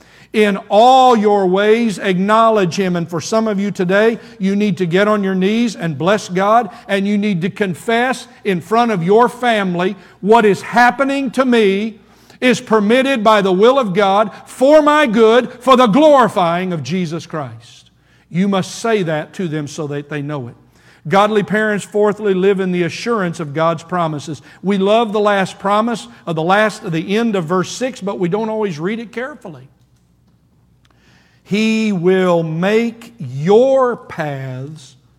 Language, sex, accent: English, male, American